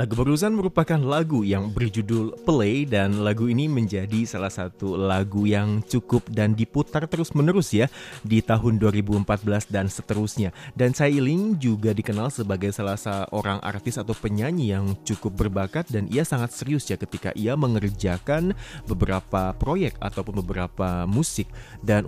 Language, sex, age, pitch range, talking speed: Indonesian, male, 30-49, 100-125 Hz, 145 wpm